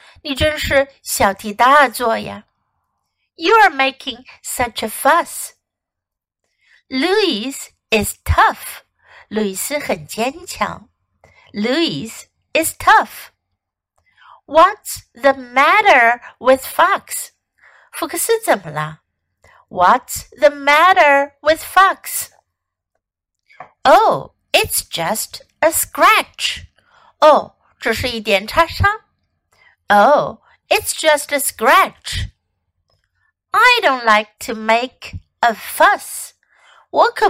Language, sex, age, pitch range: Chinese, female, 60-79, 215-335 Hz